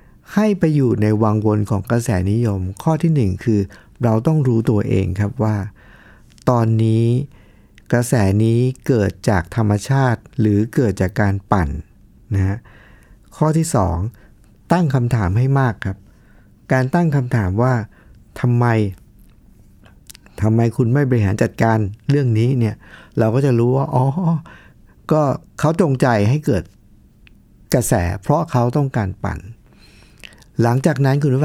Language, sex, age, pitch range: Thai, male, 60-79, 100-130 Hz